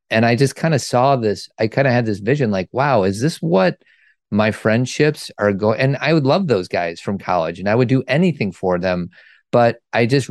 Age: 30-49